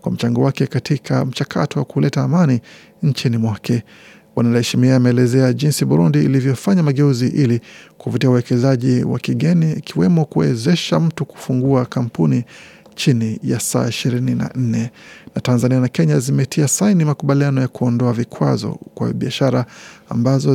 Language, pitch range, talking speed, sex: Swahili, 120-145 Hz, 125 wpm, male